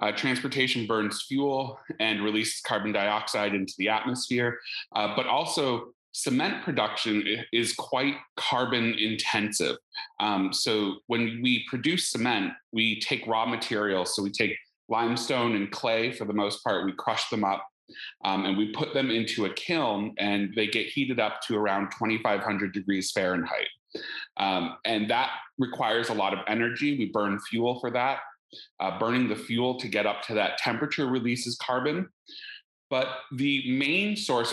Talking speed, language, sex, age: 160 wpm, English, male, 30-49